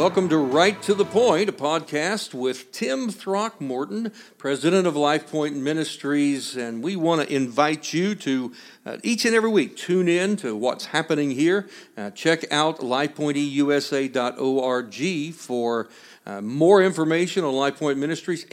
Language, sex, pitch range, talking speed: English, male, 125-175 Hz, 145 wpm